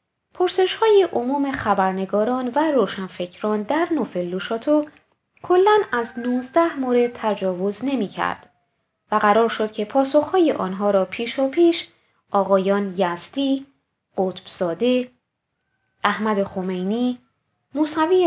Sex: female